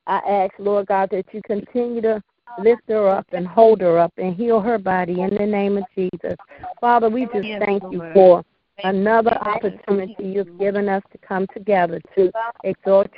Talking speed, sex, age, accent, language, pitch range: 180 wpm, female, 50-69, American, English, 190-225 Hz